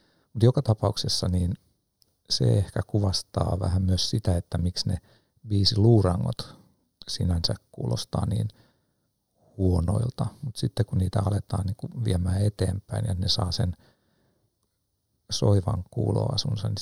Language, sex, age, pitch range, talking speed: Finnish, male, 60-79, 95-110 Hz, 120 wpm